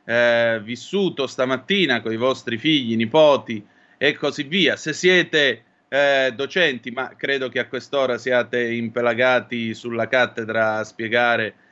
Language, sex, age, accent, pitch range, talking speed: Italian, male, 30-49, native, 120-145 Hz, 135 wpm